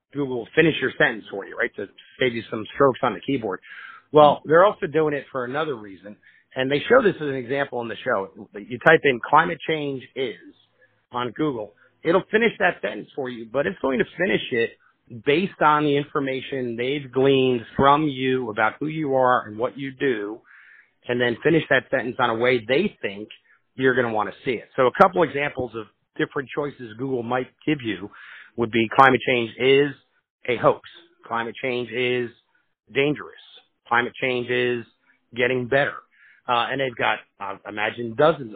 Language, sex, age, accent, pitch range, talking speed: English, male, 50-69, American, 120-145 Hz, 190 wpm